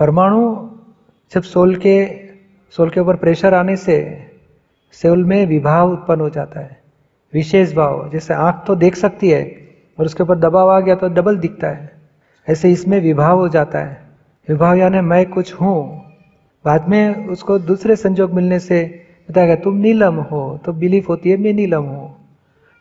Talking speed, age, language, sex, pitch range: 170 wpm, 40-59, Hindi, male, 160-190 Hz